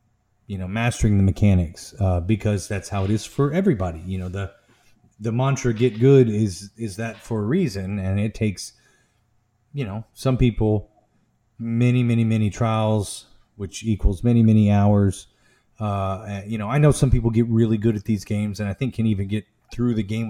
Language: English